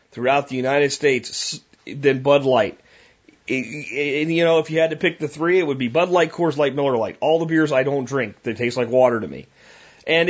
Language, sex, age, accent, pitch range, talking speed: English, male, 30-49, American, 120-155 Hz, 225 wpm